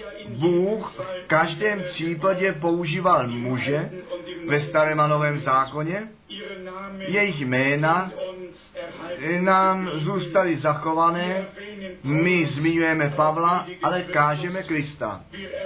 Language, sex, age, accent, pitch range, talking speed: Czech, male, 40-59, native, 155-190 Hz, 85 wpm